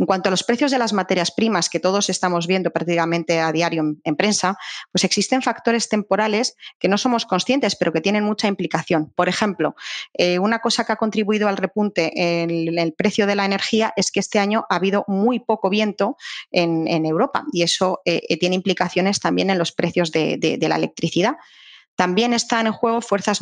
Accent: Spanish